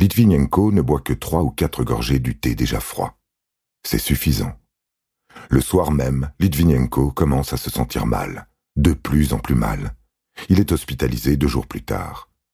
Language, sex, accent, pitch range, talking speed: French, male, French, 65-80 Hz, 165 wpm